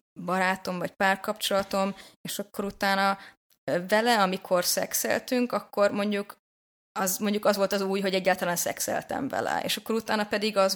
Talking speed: 145 wpm